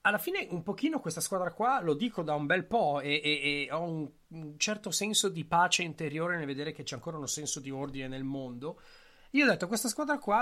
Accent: native